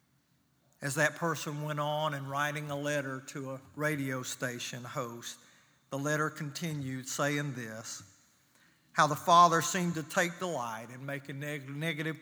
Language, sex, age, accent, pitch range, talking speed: English, male, 50-69, American, 135-165 Hz, 140 wpm